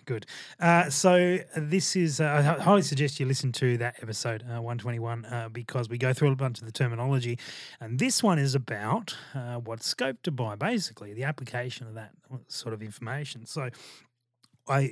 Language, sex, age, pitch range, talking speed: English, male, 30-49, 120-150 Hz, 185 wpm